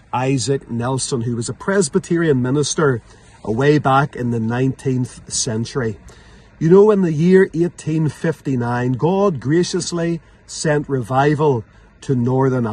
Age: 40-59